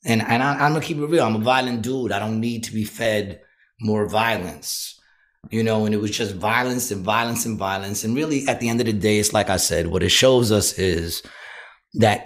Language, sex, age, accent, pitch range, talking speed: English, male, 30-49, American, 110-135 Hz, 245 wpm